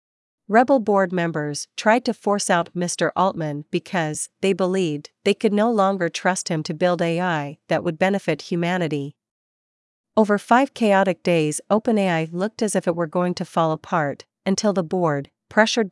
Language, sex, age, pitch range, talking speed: Vietnamese, female, 40-59, 160-200 Hz, 160 wpm